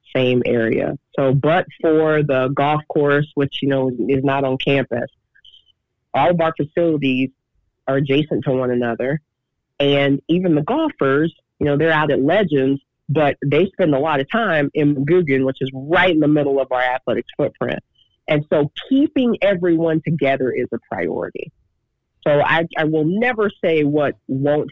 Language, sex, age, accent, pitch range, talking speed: English, female, 40-59, American, 135-155 Hz, 170 wpm